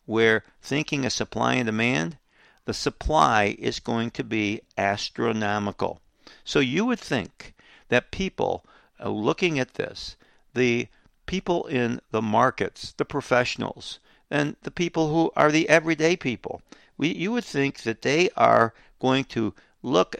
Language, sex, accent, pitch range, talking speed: English, male, American, 115-155 Hz, 140 wpm